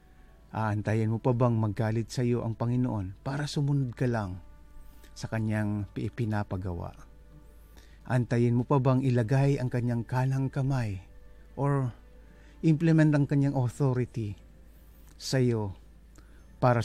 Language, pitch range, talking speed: English, 100-135 Hz, 120 wpm